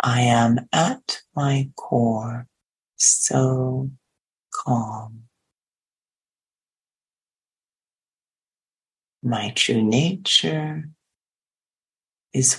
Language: English